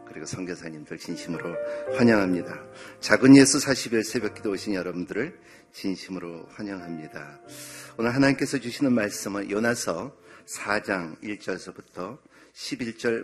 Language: Korean